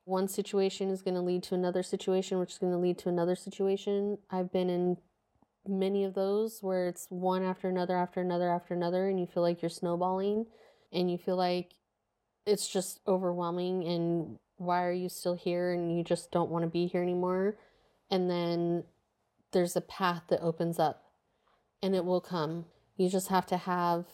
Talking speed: 190 wpm